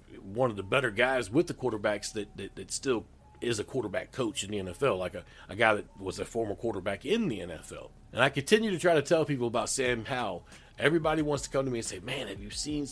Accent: American